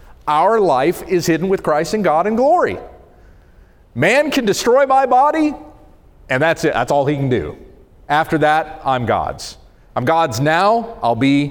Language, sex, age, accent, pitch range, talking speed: English, male, 40-59, American, 130-195 Hz, 165 wpm